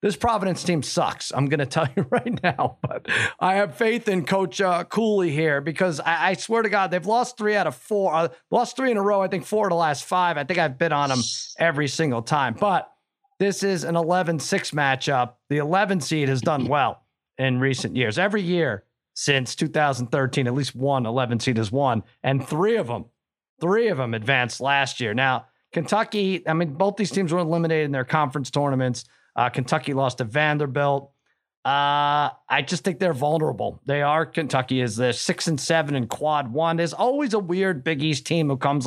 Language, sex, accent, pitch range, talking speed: English, male, American, 135-185 Hz, 205 wpm